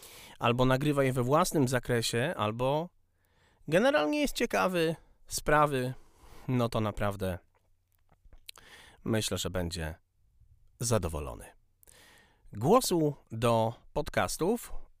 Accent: native